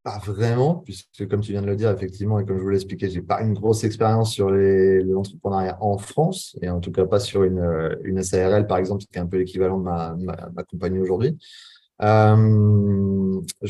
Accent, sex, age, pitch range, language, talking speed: French, male, 30-49, 95-115 Hz, French, 215 wpm